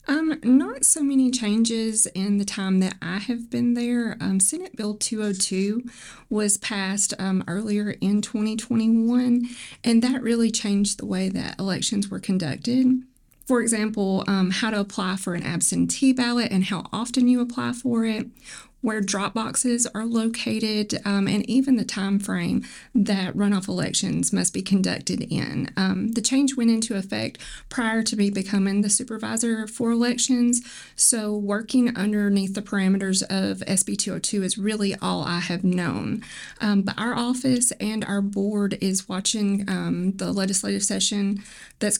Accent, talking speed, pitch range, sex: American, 155 wpm, 195-235 Hz, female